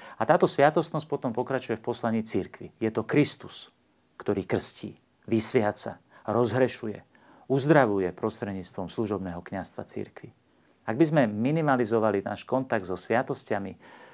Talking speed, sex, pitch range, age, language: 120 wpm, male, 100-120 Hz, 40-59, Slovak